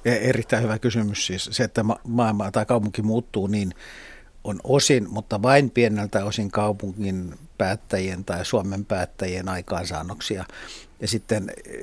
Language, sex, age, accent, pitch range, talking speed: Finnish, male, 60-79, native, 100-120 Hz, 125 wpm